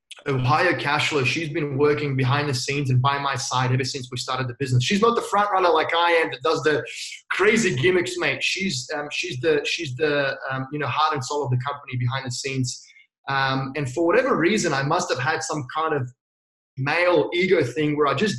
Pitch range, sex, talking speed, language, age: 140-215 Hz, male, 220 wpm, English, 20-39